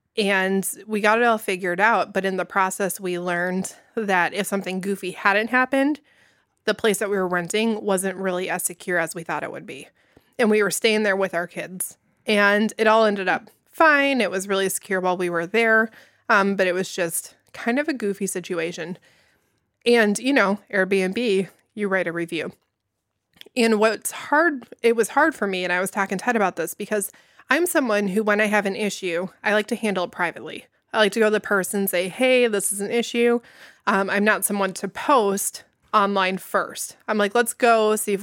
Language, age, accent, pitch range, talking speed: English, 20-39, American, 185-225 Hz, 210 wpm